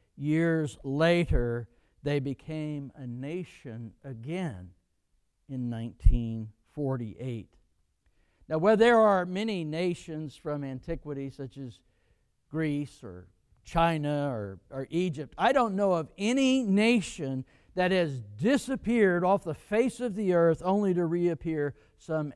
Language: English